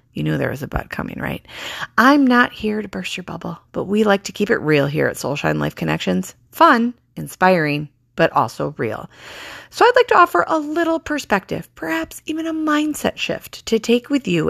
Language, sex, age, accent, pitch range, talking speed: English, female, 30-49, American, 155-235 Hz, 205 wpm